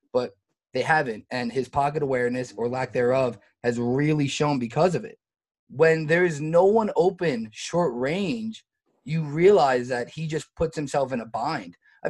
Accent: American